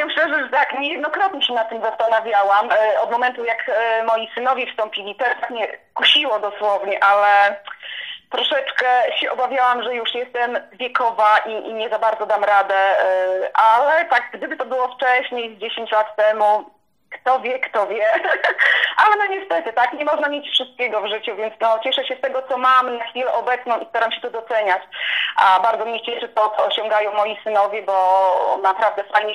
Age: 20-39